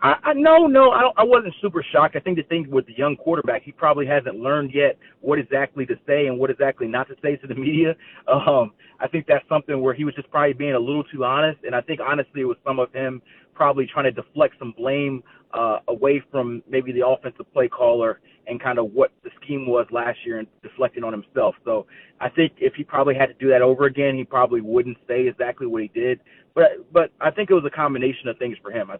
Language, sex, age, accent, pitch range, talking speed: English, male, 30-49, American, 125-155 Hz, 250 wpm